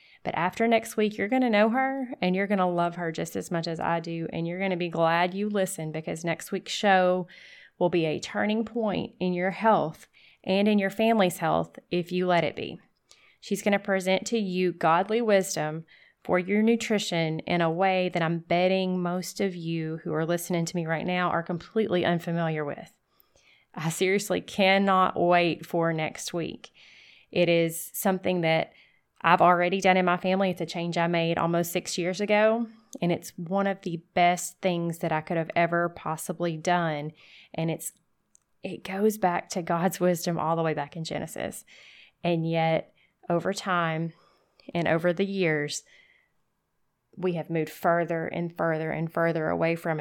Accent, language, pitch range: American, English, 165-195 Hz